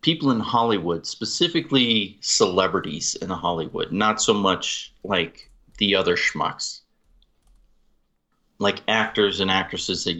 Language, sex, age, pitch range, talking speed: English, male, 30-49, 85-100 Hz, 110 wpm